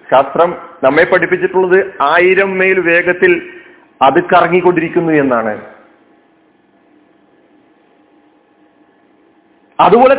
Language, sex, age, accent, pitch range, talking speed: Malayalam, male, 40-59, native, 155-230 Hz, 60 wpm